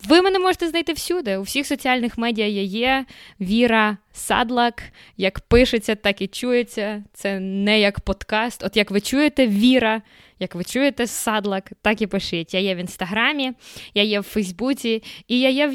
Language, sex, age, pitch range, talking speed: Ukrainian, female, 20-39, 200-245 Hz, 175 wpm